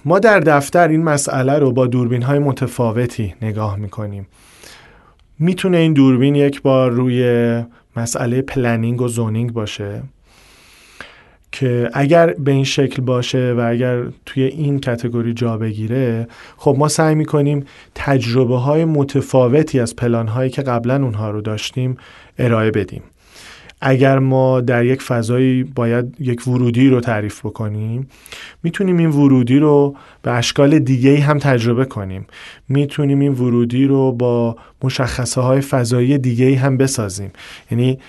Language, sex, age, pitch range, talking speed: English, male, 40-59, 115-135 Hz, 135 wpm